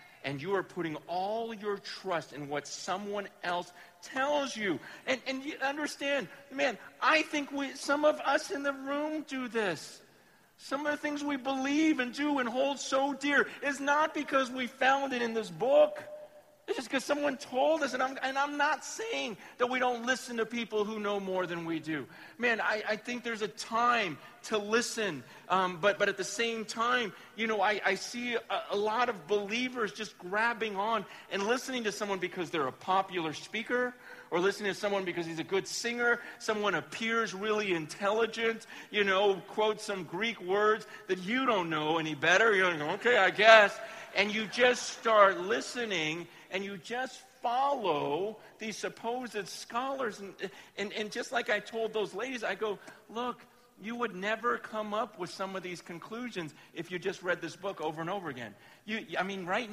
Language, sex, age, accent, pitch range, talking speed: English, male, 40-59, American, 190-255 Hz, 190 wpm